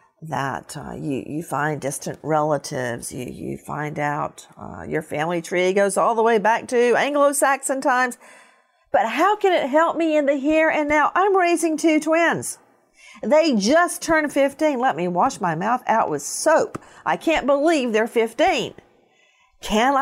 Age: 50-69